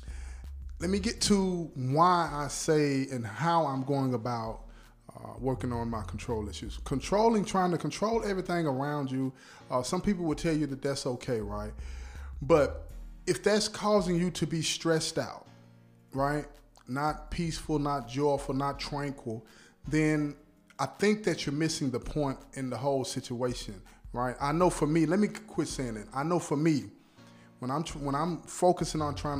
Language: English